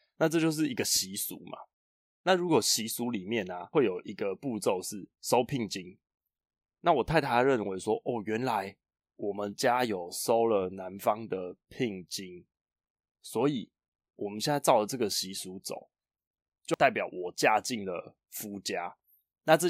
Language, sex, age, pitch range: Chinese, male, 20-39, 95-145 Hz